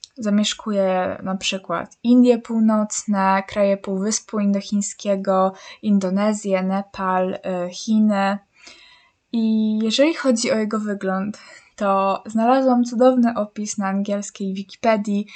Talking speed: 95 wpm